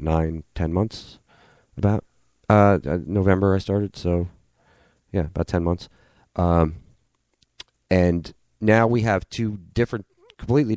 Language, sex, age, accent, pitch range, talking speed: English, male, 30-49, American, 80-100 Hz, 115 wpm